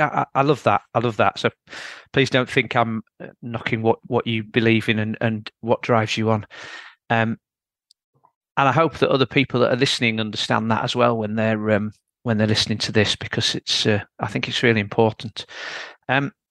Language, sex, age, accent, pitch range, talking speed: English, male, 40-59, British, 115-135 Hz, 195 wpm